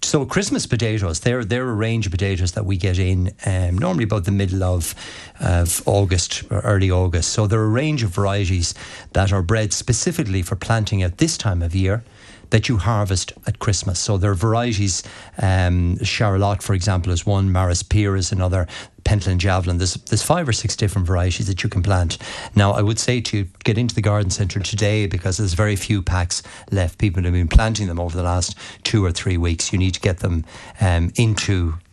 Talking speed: 205 wpm